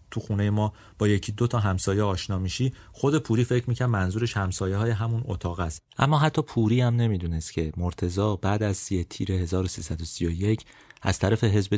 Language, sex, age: Persian, male, 30-49